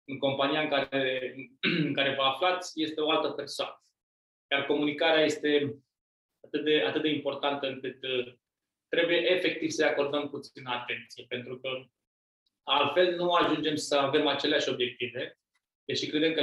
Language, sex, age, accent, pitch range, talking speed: Romanian, male, 20-39, Indian, 135-155 Hz, 150 wpm